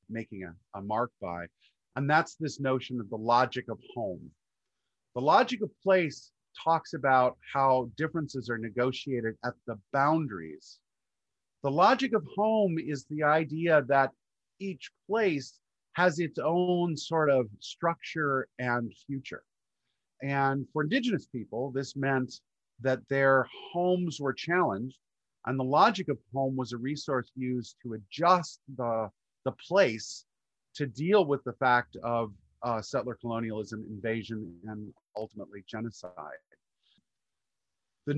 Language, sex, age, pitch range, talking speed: English, male, 40-59, 115-155 Hz, 130 wpm